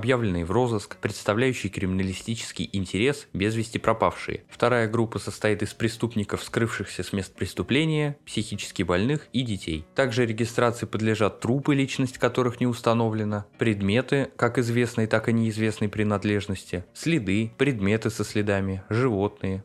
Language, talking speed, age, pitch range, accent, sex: Russian, 130 wpm, 20-39, 100-120 Hz, native, male